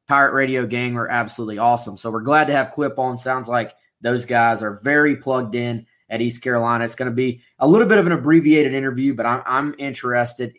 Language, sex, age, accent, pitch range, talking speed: English, male, 20-39, American, 120-160 Hz, 220 wpm